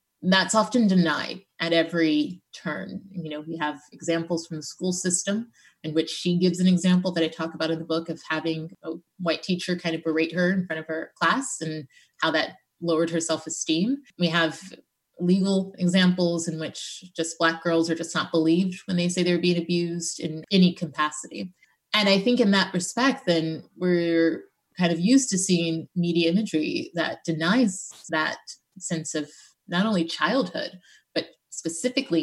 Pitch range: 160-185 Hz